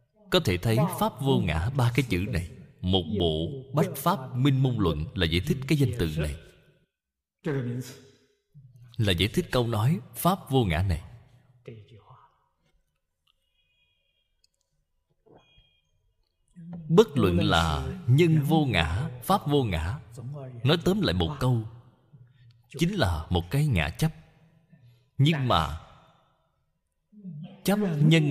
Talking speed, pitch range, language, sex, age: 120 wpm, 100-160 Hz, Vietnamese, male, 20-39